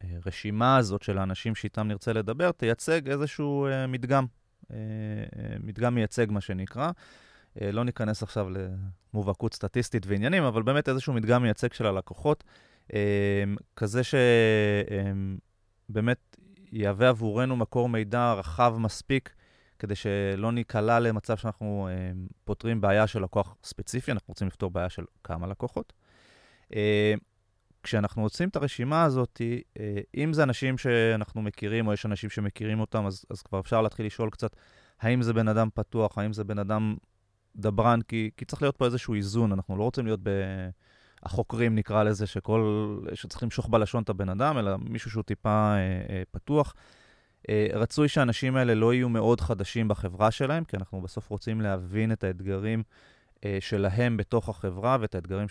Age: 30-49